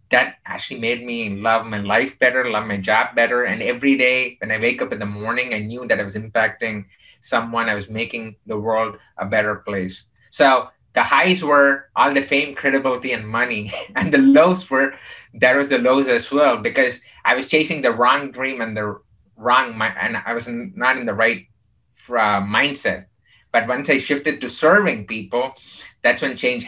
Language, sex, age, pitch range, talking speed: English, male, 30-49, 110-135 Hz, 190 wpm